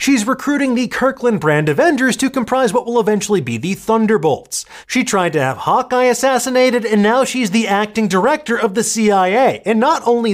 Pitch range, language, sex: 150-240 Hz, English, male